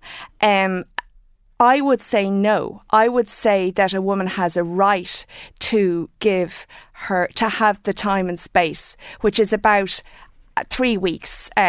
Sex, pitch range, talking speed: female, 175-215 Hz, 145 wpm